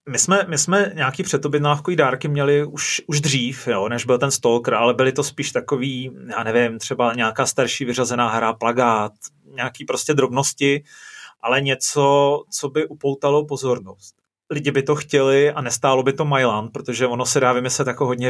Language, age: Czech, 30-49